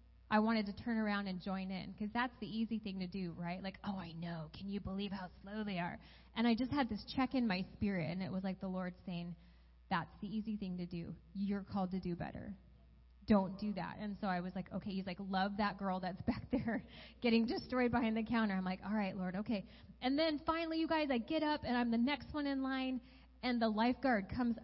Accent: American